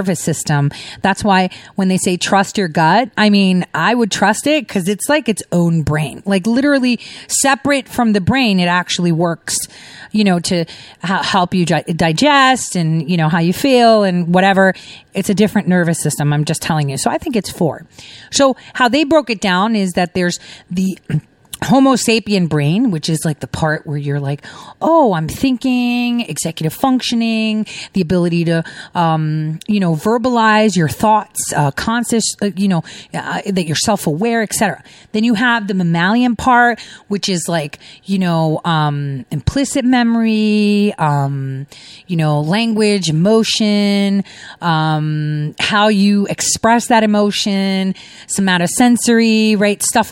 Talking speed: 160 wpm